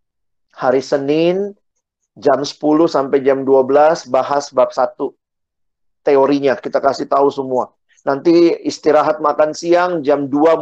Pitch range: 135-175 Hz